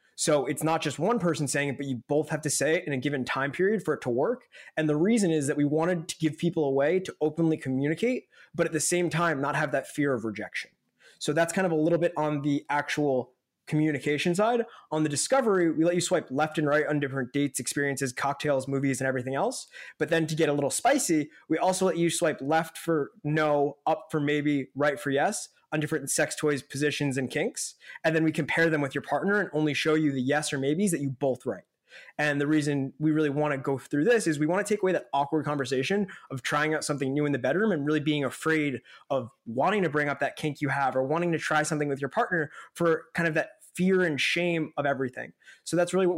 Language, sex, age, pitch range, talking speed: English, male, 20-39, 140-160 Hz, 245 wpm